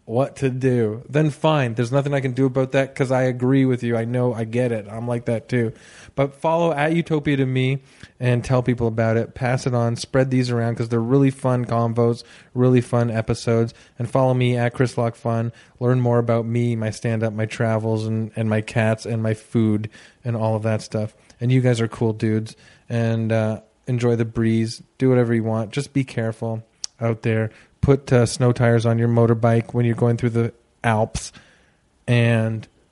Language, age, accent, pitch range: English, 30-49, American, 110-130 Hz